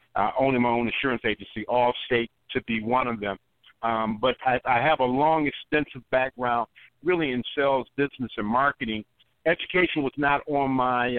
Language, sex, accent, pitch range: English, male, American, 115-140 Hz